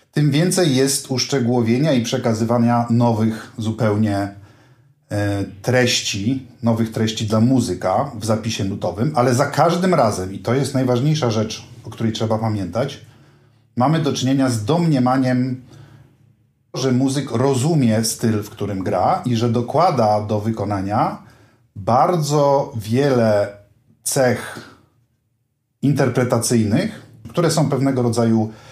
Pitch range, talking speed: 110-130 Hz, 115 wpm